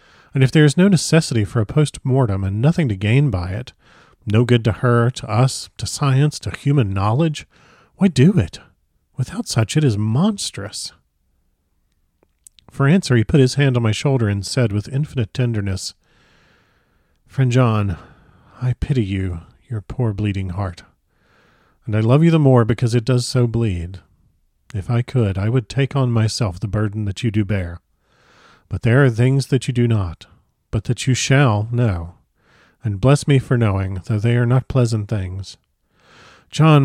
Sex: male